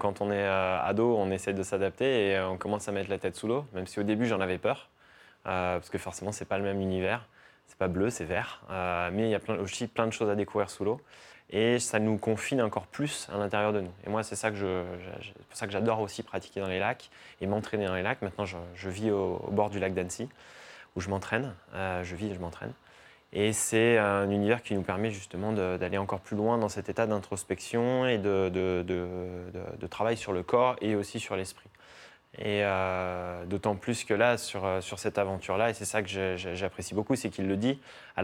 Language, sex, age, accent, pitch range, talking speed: French, male, 20-39, French, 95-110 Hz, 240 wpm